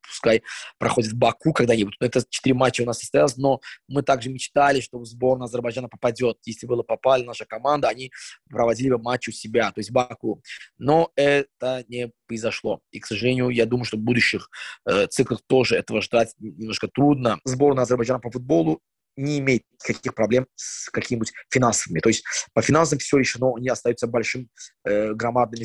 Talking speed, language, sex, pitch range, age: 175 wpm, Russian, male, 120-145 Hz, 20-39